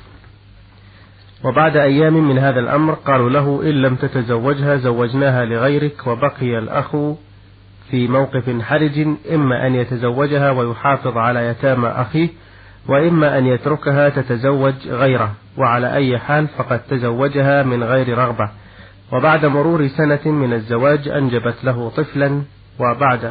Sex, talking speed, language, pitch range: male, 120 wpm, Arabic, 120-145 Hz